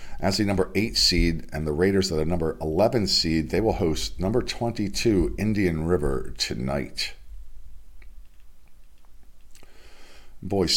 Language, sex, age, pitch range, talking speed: English, male, 40-59, 75-95 Hz, 130 wpm